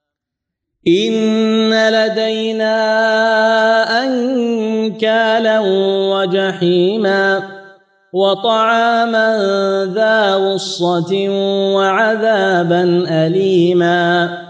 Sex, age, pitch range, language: male, 30-49, 175-220 Hz, Arabic